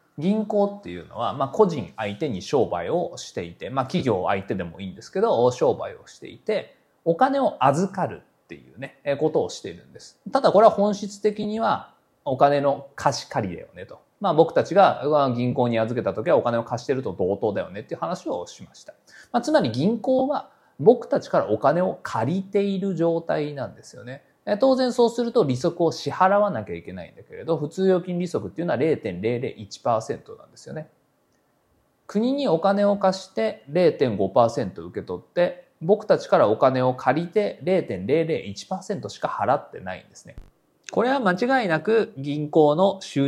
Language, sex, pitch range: Japanese, male, 130-210 Hz